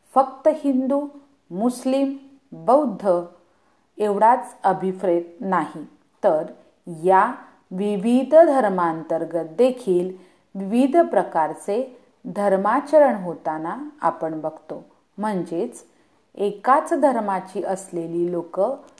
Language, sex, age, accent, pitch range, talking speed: Hindi, female, 40-59, native, 170-265 Hz, 60 wpm